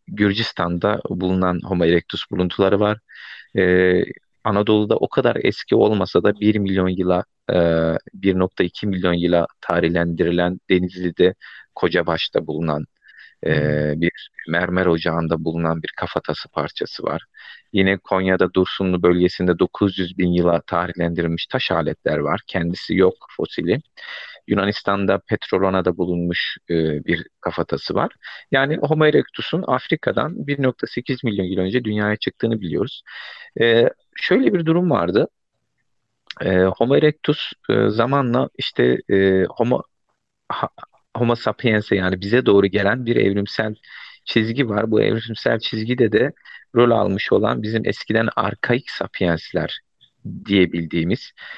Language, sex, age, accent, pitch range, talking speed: Turkish, male, 40-59, native, 85-110 Hz, 115 wpm